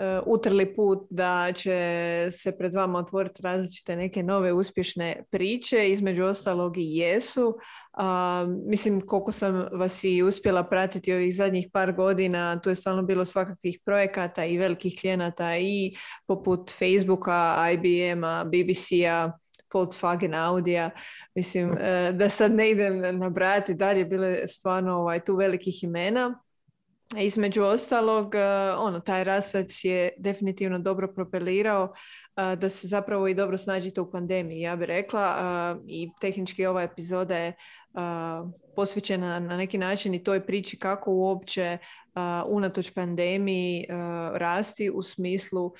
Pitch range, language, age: 180-195 Hz, Croatian, 20-39